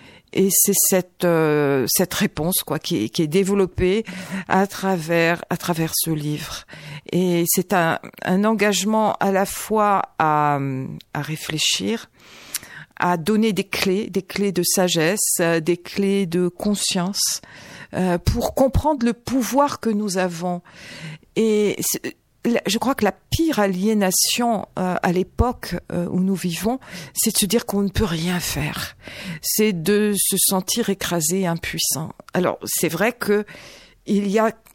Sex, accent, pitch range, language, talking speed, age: female, French, 175-210 Hz, French, 145 wpm, 50-69